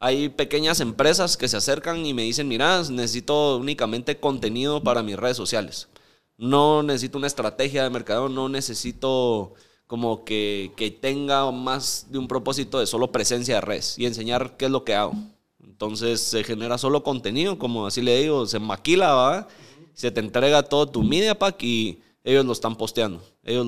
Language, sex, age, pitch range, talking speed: Spanish, male, 30-49, 110-140 Hz, 175 wpm